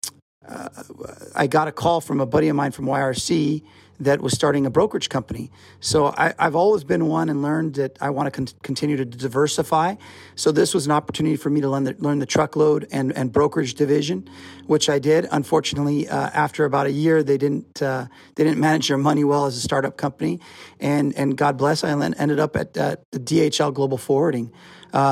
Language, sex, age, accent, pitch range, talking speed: English, male, 40-59, American, 130-150 Hz, 205 wpm